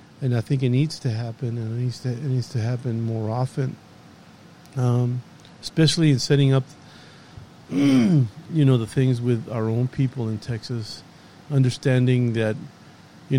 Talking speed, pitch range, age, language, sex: 155 wpm, 120-140 Hz, 50-69, English, male